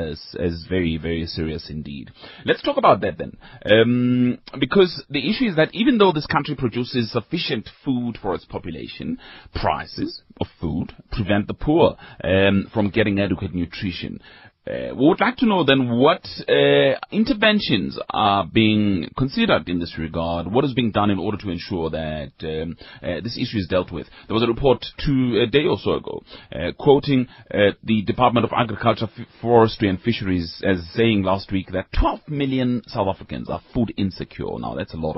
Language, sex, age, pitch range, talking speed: English, male, 30-49, 85-125 Hz, 185 wpm